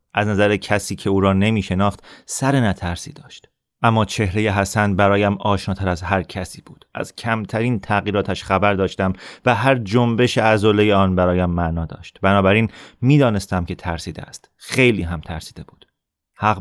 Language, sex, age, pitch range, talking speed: Persian, male, 30-49, 95-105 Hz, 150 wpm